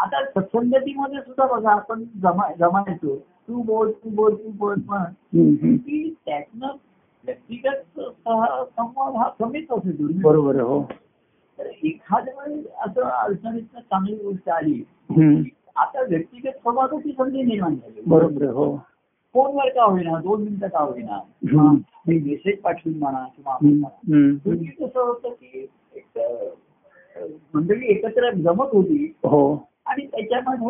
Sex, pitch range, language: male, 165-260 Hz, Marathi